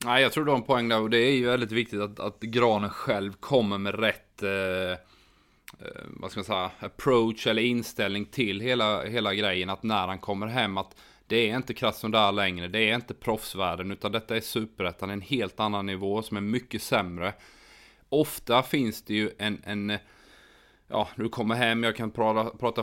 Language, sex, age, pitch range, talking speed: Swedish, male, 30-49, 100-115 Hz, 205 wpm